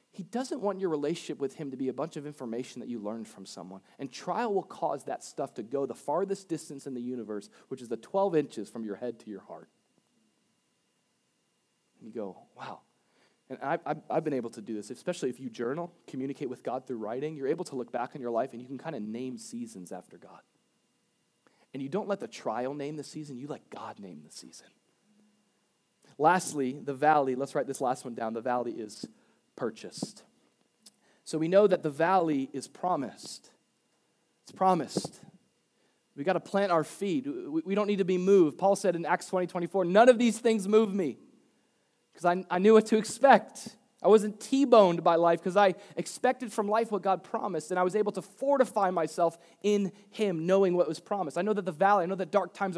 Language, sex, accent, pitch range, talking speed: English, male, American, 135-205 Hz, 215 wpm